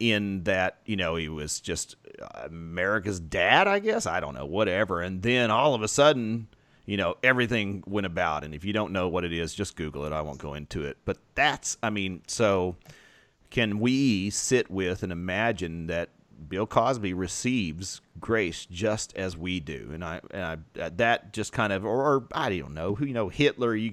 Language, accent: English, American